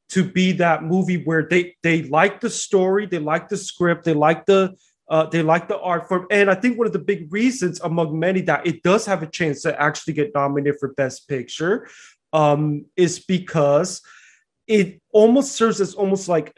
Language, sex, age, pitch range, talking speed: English, male, 20-39, 155-190 Hz, 200 wpm